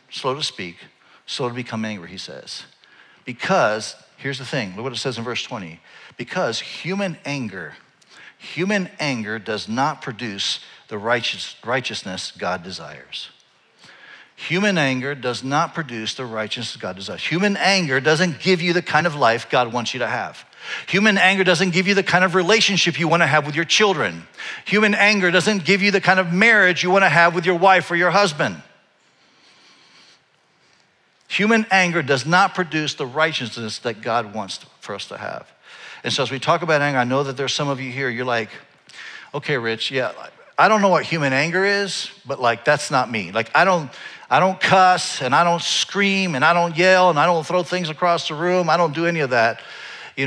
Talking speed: 195 wpm